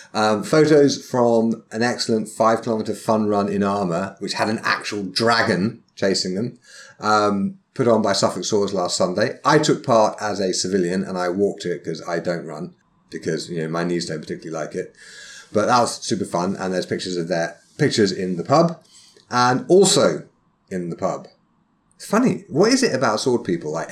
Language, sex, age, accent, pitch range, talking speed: English, male, 30-49, British, 95-135 Hz, 195 wpm